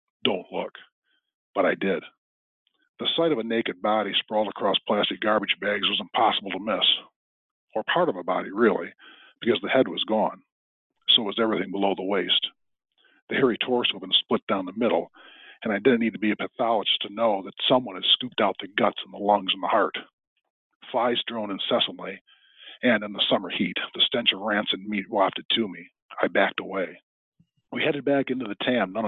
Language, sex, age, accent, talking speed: English, male, 40-59, American, 195 wpm